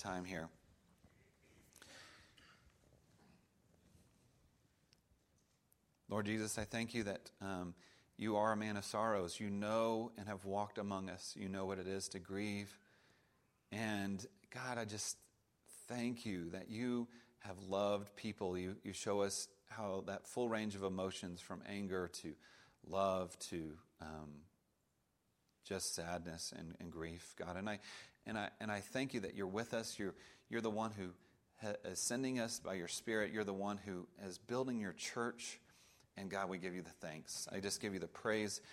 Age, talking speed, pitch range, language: 40-59, 165 wpm, 95-115 Hz, English